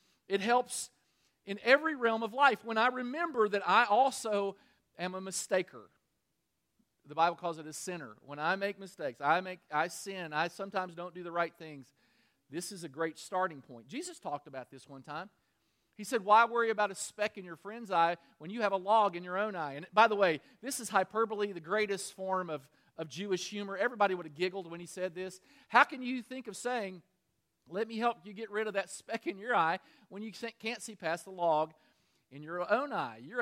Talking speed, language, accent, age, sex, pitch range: 215 wpm, English, American, 40-59, male, 175-250 Hz